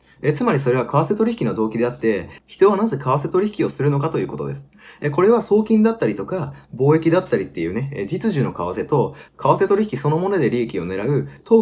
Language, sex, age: Japanese, male, 20-39